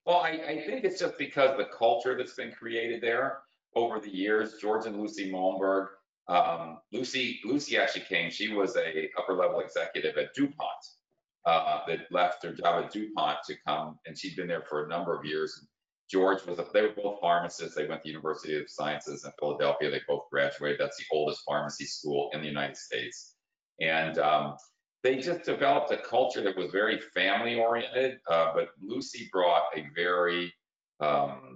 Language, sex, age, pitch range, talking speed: English, male, 40-59, 85-135 Hz, 185 wpm